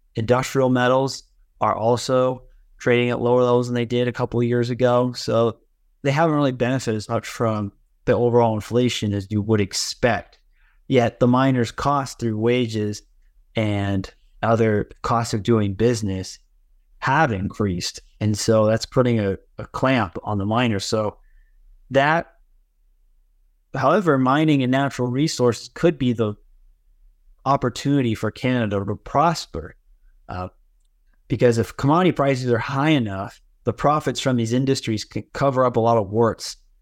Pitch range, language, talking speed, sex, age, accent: 105-125 Hz, English, 145 wpm, male, 20-39, American